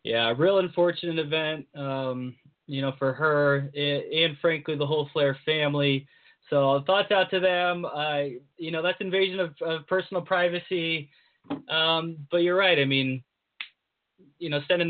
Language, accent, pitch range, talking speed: English, American, 150-180 Hz, 155 wpm